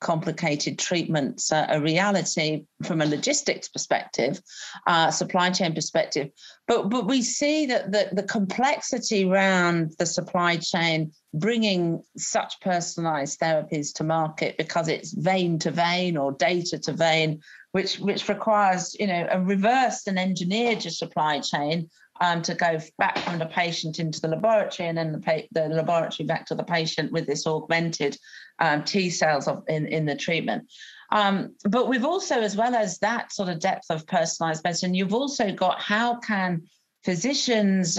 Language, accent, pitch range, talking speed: English, British, 165-205 Hz, 155 wpm